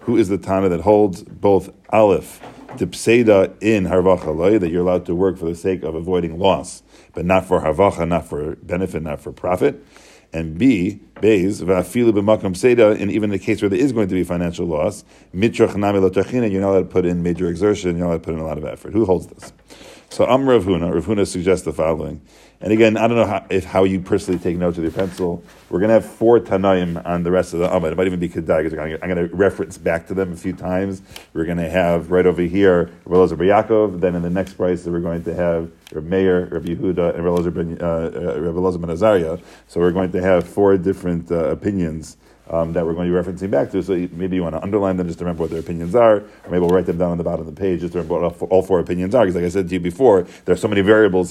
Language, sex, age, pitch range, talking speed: English, male, 40-59, 85-100 Hz, 250 wpm